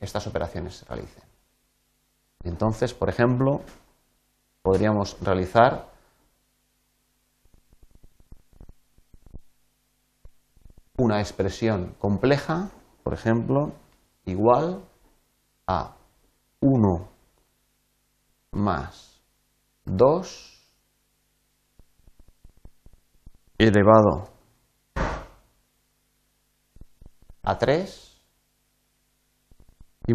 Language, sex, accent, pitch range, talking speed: Spanish, male, Spanish, 95-125 Hz, 45 wpm